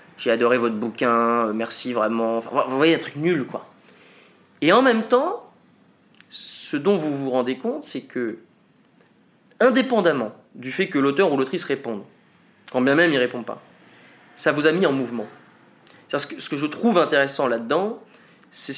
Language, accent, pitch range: French, French, 125-175 Hz